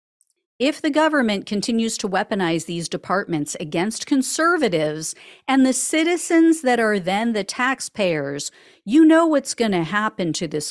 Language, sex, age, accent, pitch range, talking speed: English, female, 50-69, American, 175-270 Hz, 140 wpm